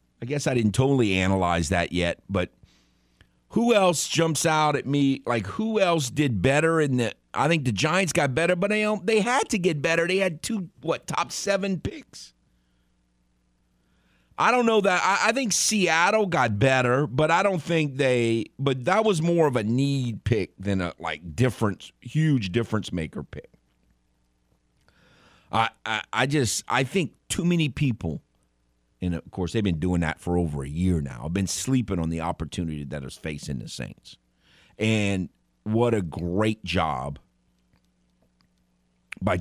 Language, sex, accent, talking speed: English, male, American, 170 wpm